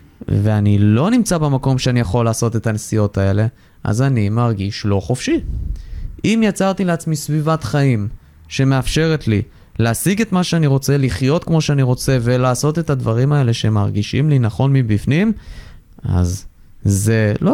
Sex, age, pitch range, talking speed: male, 20-39, 105-140 Hz, 145 wpm